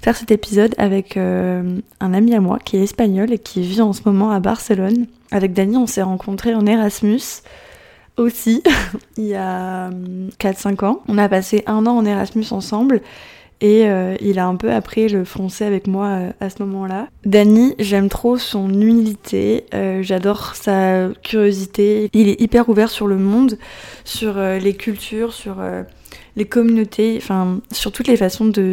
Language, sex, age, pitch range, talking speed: French, female, 20-39, 195-220 Hz, 180 wpm